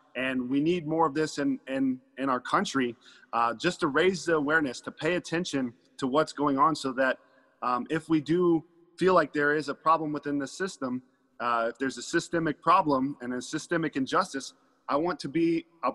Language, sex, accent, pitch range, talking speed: English, male, American, 125-160 Hz, 205 wpm